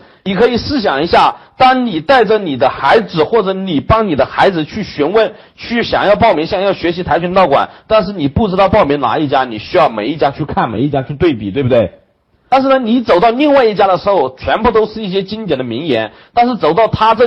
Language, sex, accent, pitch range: Chinese, male, native, 145-225 Hz